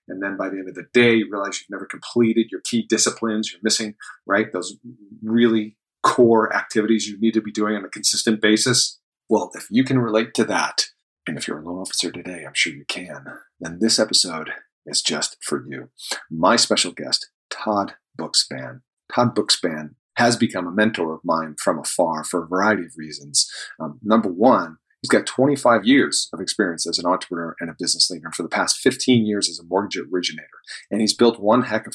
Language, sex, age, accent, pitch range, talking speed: English, male, 40-59, American, 95-115 Hz, 205 wpm